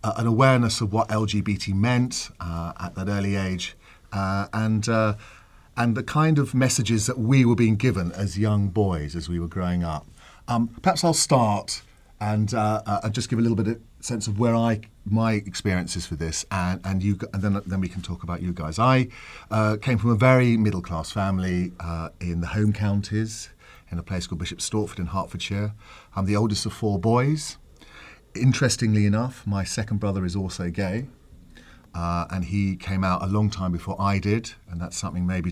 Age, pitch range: 40-59, 90-110 Hz